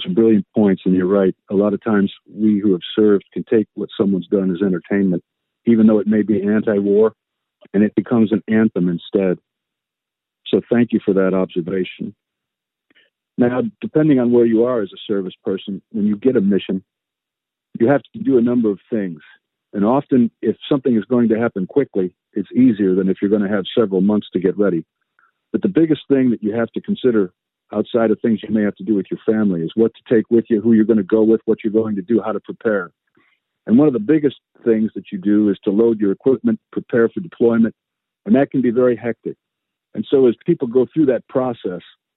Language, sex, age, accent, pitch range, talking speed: English, male, 50-69, American, 105-120 Hz, 220 wpm